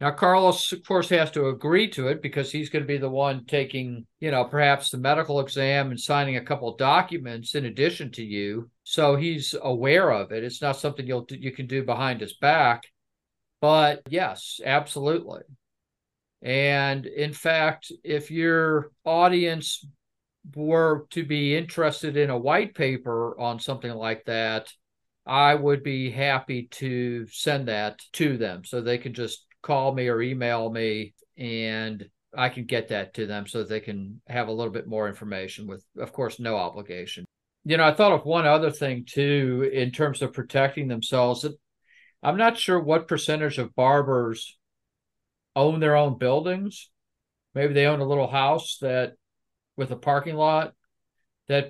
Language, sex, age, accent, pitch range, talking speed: English, male, 50-69, American, 120-150 Hz, 170 wpm